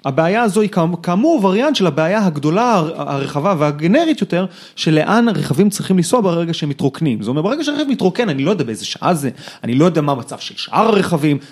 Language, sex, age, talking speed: Hebrew, male, 30-49, 205 wpm